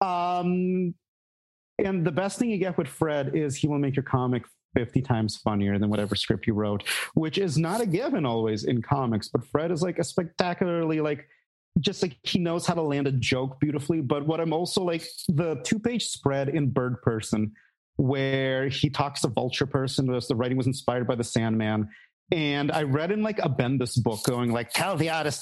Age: 30-49